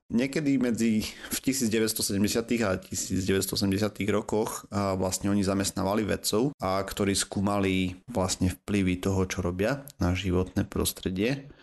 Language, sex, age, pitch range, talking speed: Slovak, male, 30-49, 95-105 Hz, 120 wpm